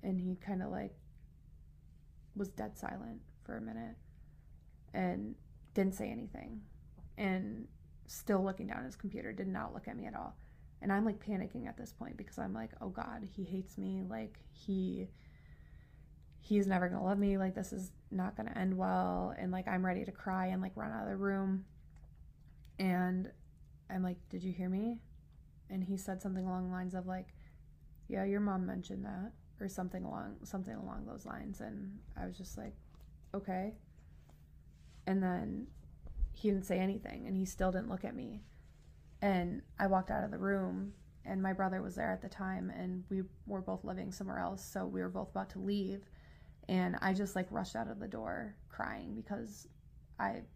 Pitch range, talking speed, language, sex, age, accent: 180-200 Hz, 190 wpm, English, female, 20-39, American